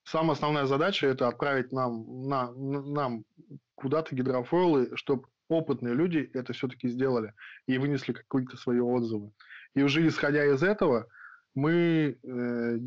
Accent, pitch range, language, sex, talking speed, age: native, 120-140 Hz, Russian, male, 140 wpm, 20-39